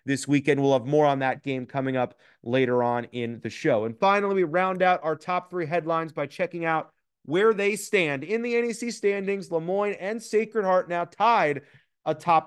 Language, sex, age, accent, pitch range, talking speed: English, male, 30-49, American, 145-185 Hz, 195 wpm